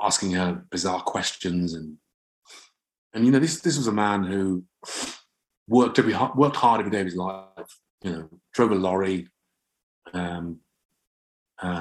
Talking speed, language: 150 wpm, English